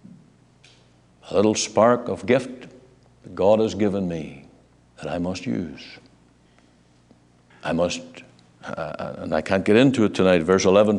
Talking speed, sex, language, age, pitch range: 140 wpm, male, English, 60-79, 85-120 Hz